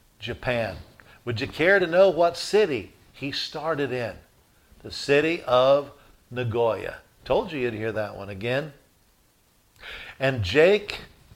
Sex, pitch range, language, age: male, 110-145 Hz, English, 50-69